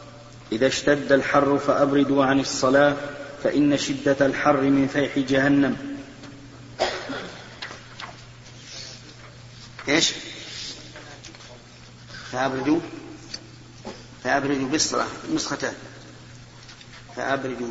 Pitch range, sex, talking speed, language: 135-145 Hz, male, 60 wpm, Arabic